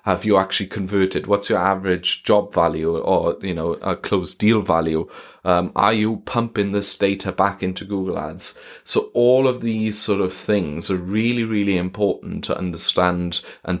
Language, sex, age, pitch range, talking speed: English, male, 30-49, 90-100 Hz, 175 wpm